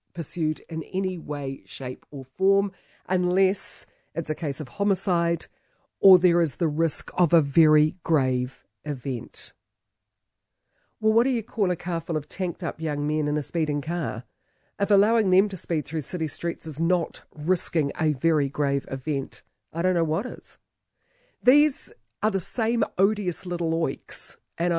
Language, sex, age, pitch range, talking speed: English, female, 50-69, 135-190 Hz, 160 wpm